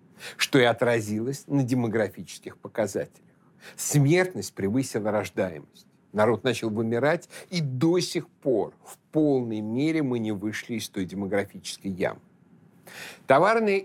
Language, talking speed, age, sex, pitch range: Russian, 115 wpm, 60-79, male, 110-155 Hz